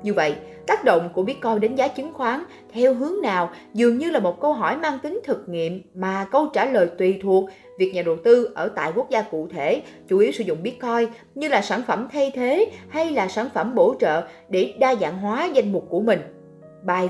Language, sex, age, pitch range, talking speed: Vietnamese, female, 20-39, 195-275 Hz, 230 wpm